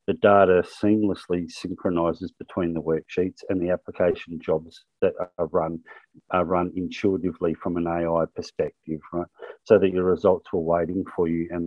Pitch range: 85-100 Hz